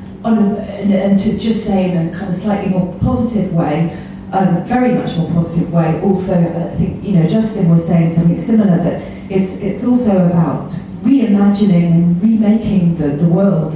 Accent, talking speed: British, 185 wpm